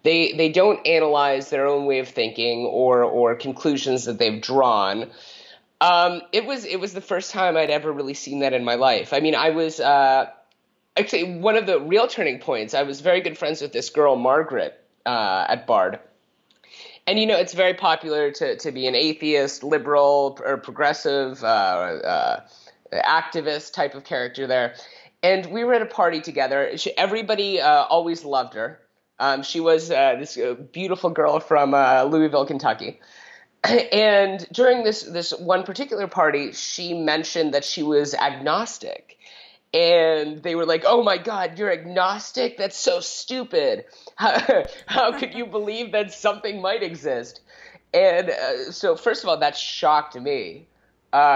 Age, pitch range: 30-49, 140-210 Hz